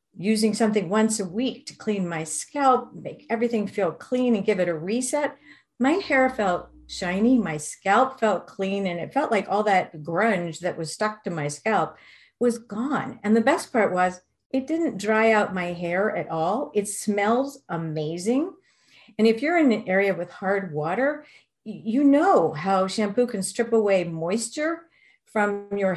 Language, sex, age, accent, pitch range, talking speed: English, female, 50-69, American, 185-245 Hz, 175 wpm